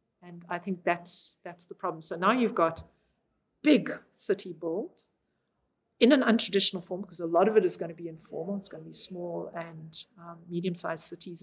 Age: 50-69